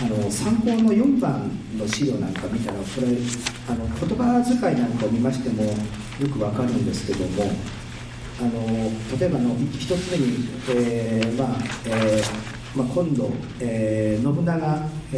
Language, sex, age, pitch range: Japanese, male, 40-59, 110-160 Hz